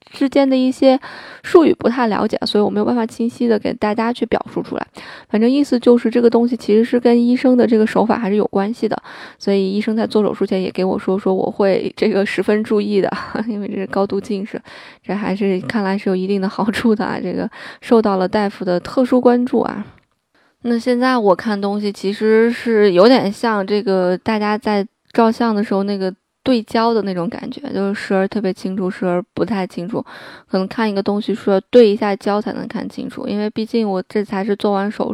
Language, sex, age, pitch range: Chinese, female, 20-39, 195-235 Hz